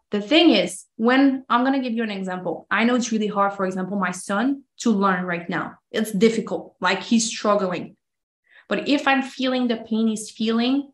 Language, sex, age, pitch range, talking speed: English, female, 20-39, 195-230 Hz, 205 wpm